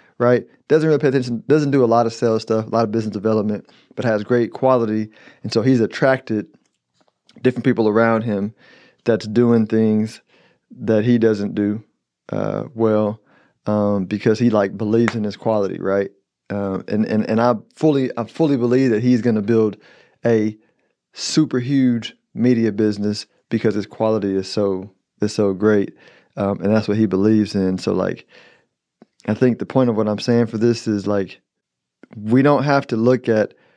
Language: English